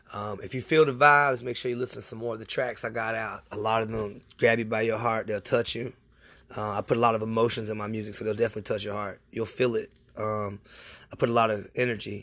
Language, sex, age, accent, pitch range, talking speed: English, male, 20-39, American, 105-125 Hz, 280 wpm